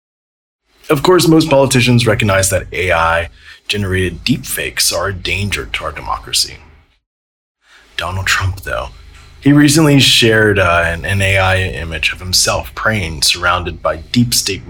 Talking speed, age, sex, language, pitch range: 135 wpm, 30-49, male, English, 80-110 Hz